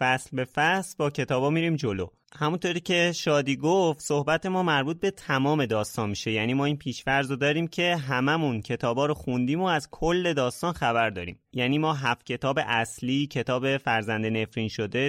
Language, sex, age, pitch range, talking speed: Persian, male, 30-49, 115-160 Hz, 175 wpm